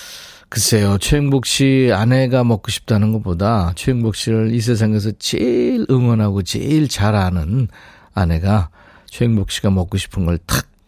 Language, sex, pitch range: Korean, male, 100-140 Hz